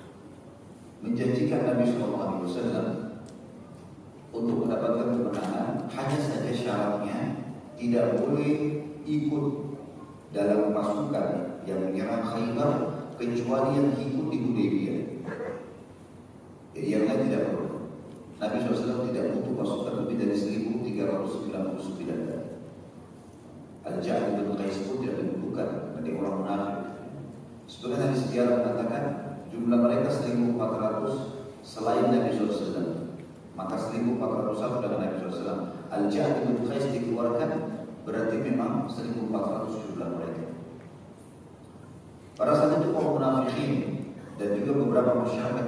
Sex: male